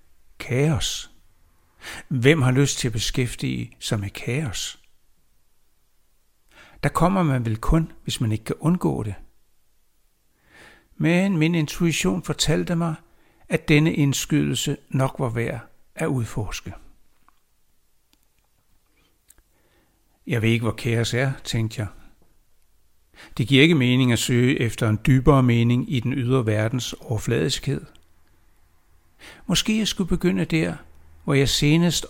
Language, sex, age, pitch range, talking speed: Danish, male, 60-79, 110-150 Hz, 120 wpm